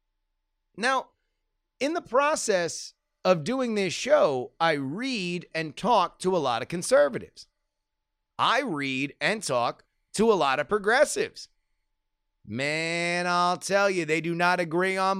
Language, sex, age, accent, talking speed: English, male, 30-49, American, 140 wpm